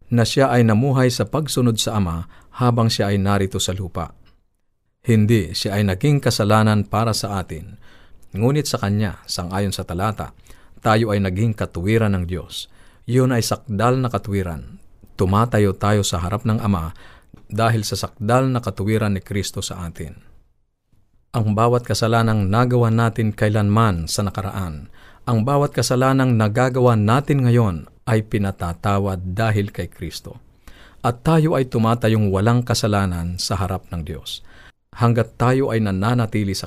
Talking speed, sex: 145 wpm, male